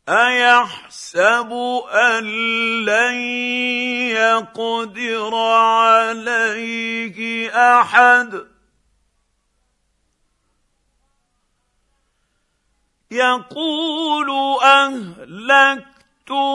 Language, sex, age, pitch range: Arabic, male, 50-69, 245-285 Hz